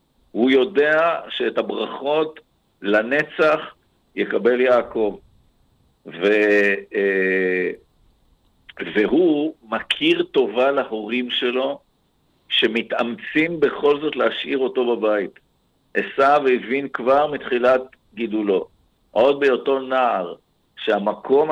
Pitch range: 115-145 Hz